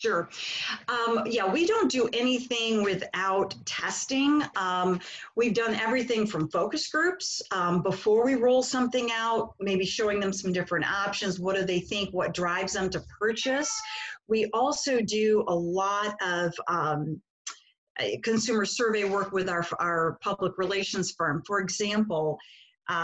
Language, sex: English, female